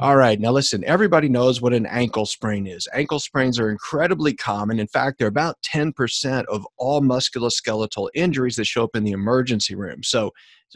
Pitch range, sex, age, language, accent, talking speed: 105-135 Hz, male, 40-59, English, American, 190 wpm